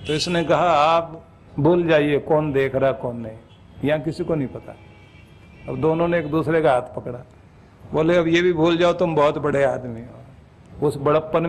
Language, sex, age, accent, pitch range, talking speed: Hindi, male, 60-79, native, 140-185 Hz, 195 wpm